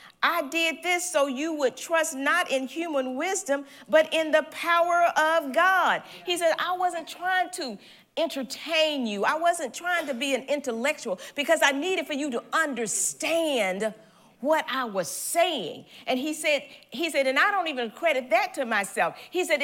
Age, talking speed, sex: 50-69, 175 wpm, female